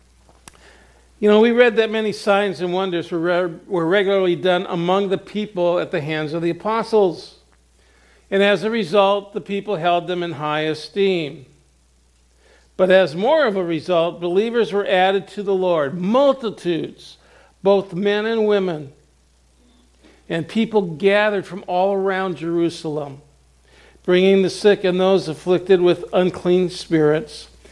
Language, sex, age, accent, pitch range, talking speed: English, male, 50-69, American, 140-195 Hz, 145 wpm